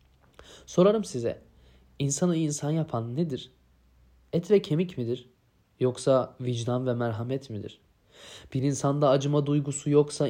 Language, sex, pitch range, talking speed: Turkish, male, 115-150 Hz, 115 wpm